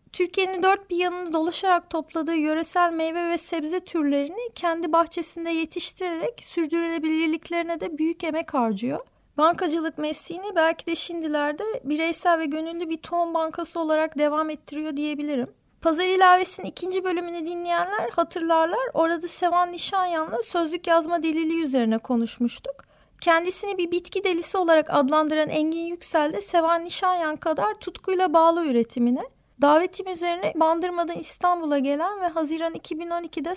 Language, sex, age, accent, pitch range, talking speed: Turkish, female, 30-49, native, 315-350 Hz, 125 wpm